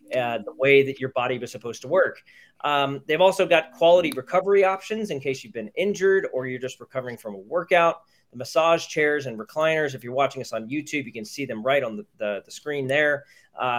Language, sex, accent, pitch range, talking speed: English, male, American, 130-165 Hz, 220 wpm